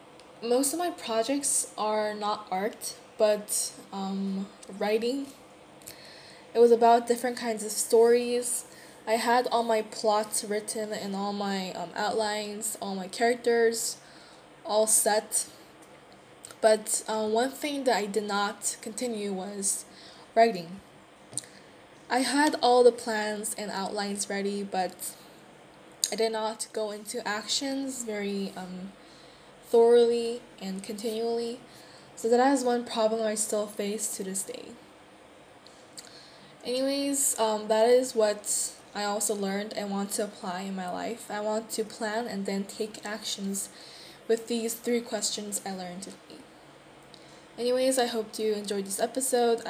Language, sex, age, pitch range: Korean, female, 10-29, 200-235 Hz